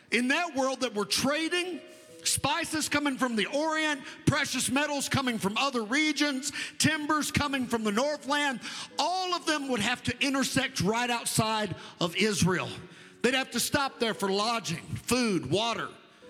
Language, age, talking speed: English, 50-69, 155 wpm